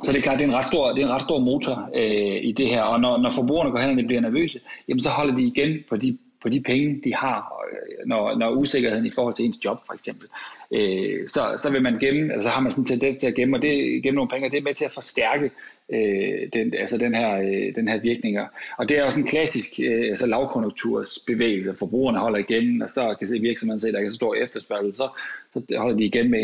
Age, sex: 30-49, male